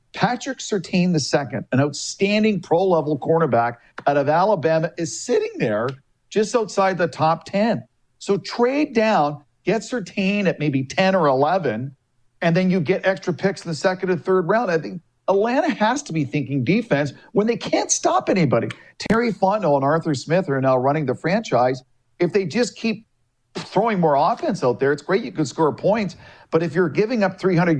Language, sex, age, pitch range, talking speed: English, male, 50-69, 140-195 Hz, 185 wpm